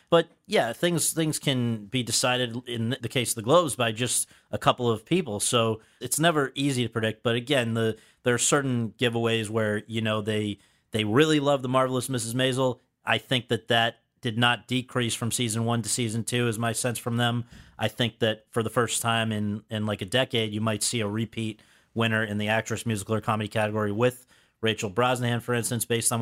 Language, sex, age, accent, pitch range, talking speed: English, male, 40-59, American, 110-125 Hz, 215 wpm